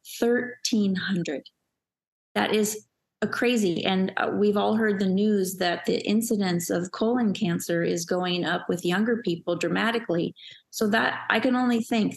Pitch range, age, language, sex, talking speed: 180-220 Hz, 30-49, English, female, 155 wpm